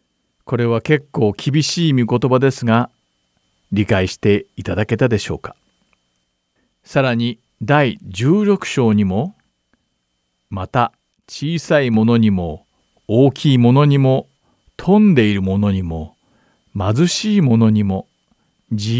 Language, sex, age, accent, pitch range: Japanese, male, 50-69, native, 100-145 Hz